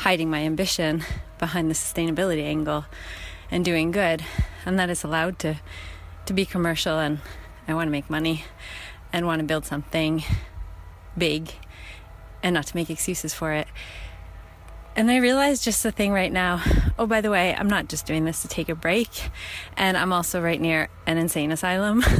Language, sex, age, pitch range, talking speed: English, female, 30-49, 155-230 Hz, 180 wpm